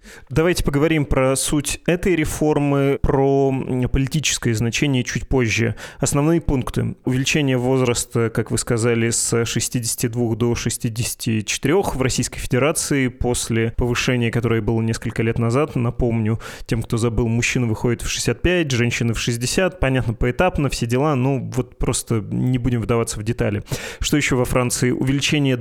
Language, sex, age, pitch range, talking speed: Russian, male, 30-49, 115-140 Hz, 140 wpm